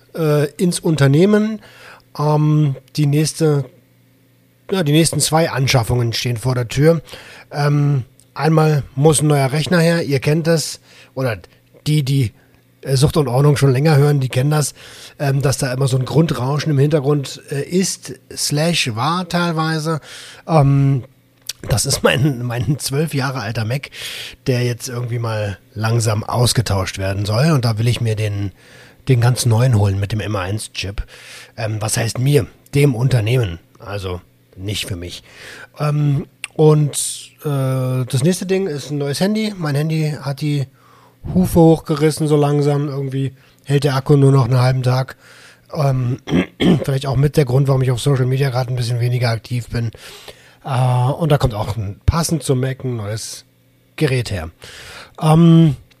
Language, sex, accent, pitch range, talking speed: German, male, German, 125-150 Hz, 155 wpm